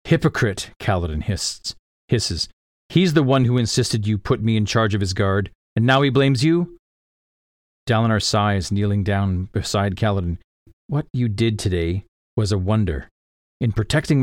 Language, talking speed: English, 150 wpm